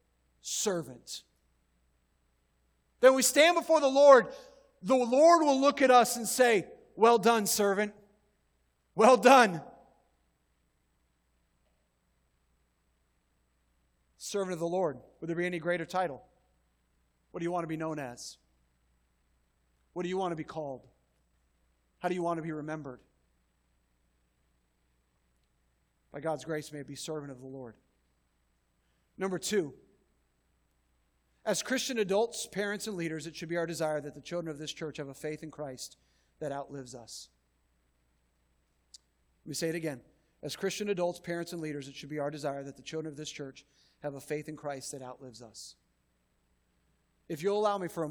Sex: male